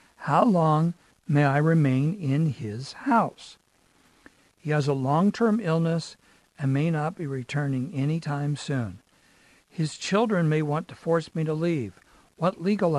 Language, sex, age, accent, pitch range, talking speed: English, male, 60-79, American, 145-175 Hz, 145 wpm